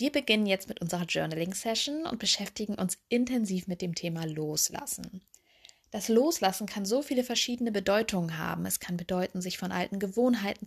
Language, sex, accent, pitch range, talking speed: German, female, German, 180-220 Hz, 170 wpm